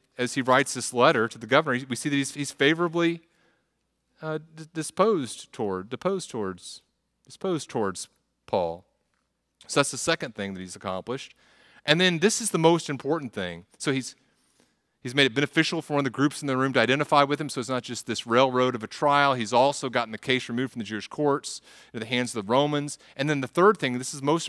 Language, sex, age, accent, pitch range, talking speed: English, male, 40-59, American, 130-175 Hz, 220 wpm